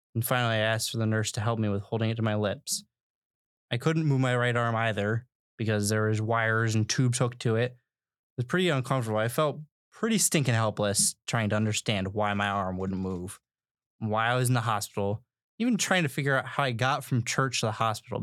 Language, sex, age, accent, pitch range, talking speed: English, male, 20-39, American, 110-135 Hz, 225 wpm